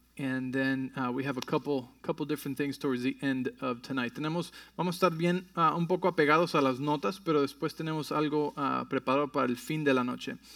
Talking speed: 215 wpm